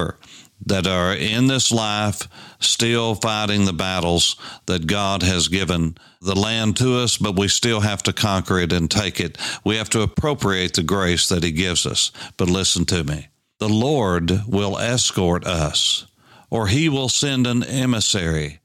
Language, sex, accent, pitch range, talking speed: English, male, American, 95-110 Hz, 165 wpm